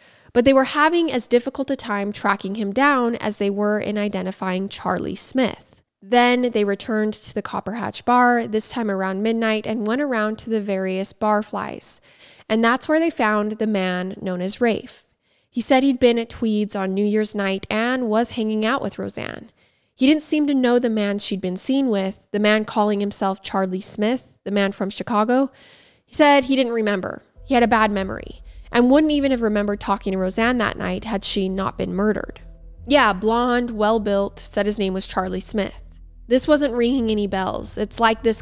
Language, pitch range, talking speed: English, 200-245 Hz, 200 wpm